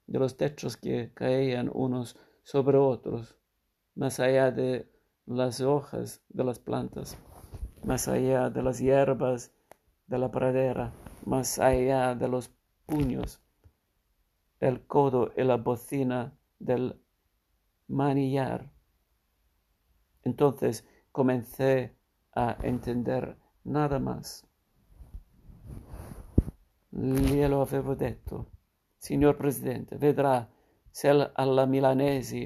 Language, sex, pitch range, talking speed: Italian, male, 125-140 Hz, 95 wpm